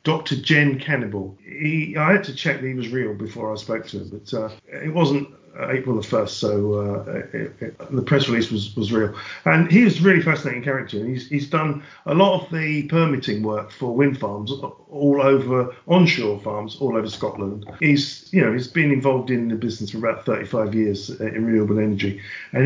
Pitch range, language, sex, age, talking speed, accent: 110-155 Hz, English, male, 50-69, 205 wpm, British